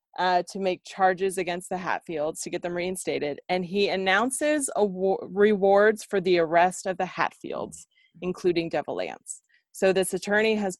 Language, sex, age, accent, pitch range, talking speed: English, female, 20-39, American, 175-210 Hz, 155 wpm